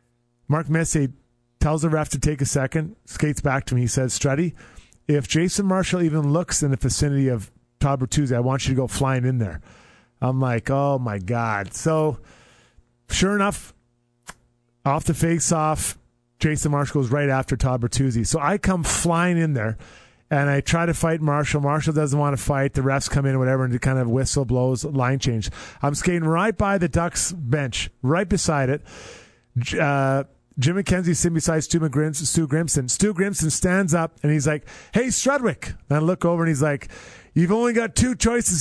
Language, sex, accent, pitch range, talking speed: English, male, American, 135-175 Hz, 190 wpm